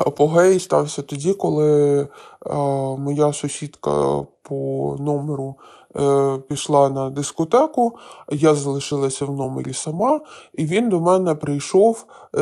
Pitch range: 140-165 Hz